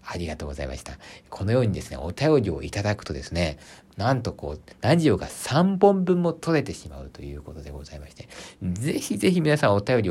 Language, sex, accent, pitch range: Japanese, male, native, 75-110 Hz